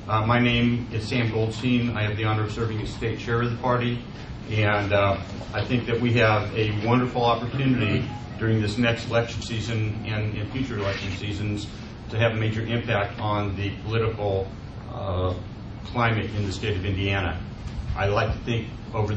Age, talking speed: 40-59, 180 wpm